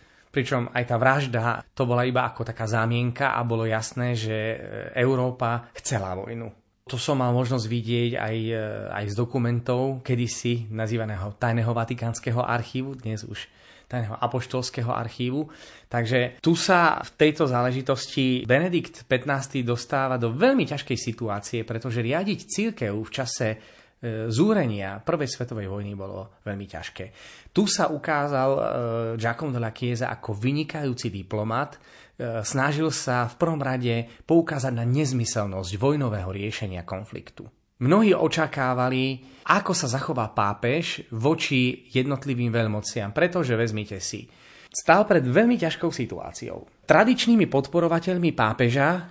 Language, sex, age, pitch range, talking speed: Slovak, male, 20-39, 115-140 Hz, 125 wpm